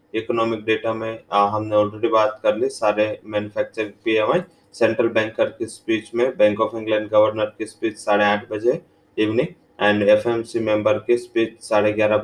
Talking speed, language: 150 wpm, English